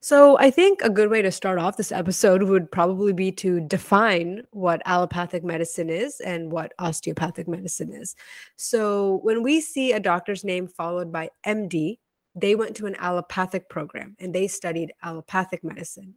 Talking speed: 170 wpm